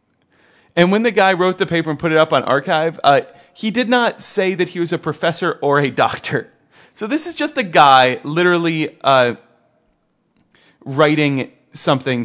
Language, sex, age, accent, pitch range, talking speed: English, male, 30-49, American, 130-175 Hz, 175 wpm